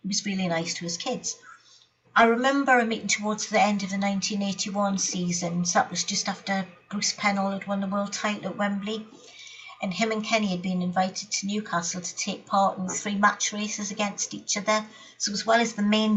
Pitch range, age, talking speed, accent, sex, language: 180-210 Hz, 50-69, 210 wpm, British, female, English